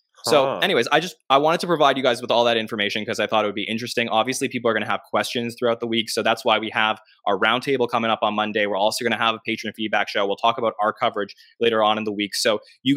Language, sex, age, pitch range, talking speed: English, male, 20-39, 115-130 Hz, 290 wpm